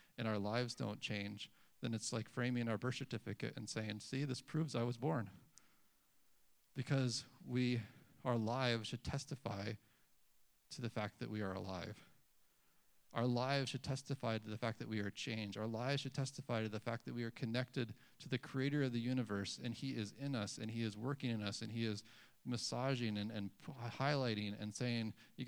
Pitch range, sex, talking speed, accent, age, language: 110-130 Hz, male, 195 wpm, American, 40-59, English